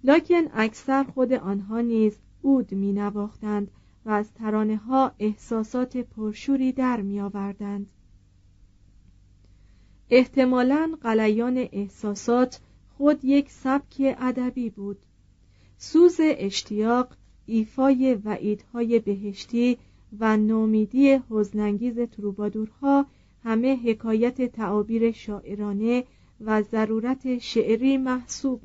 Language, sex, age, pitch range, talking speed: Persian, female, 40-59, 205-250 Hz, 85 wpm